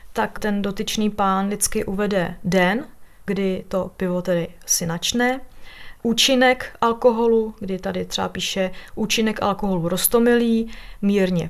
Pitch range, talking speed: 195-230 Hz, 115 wpm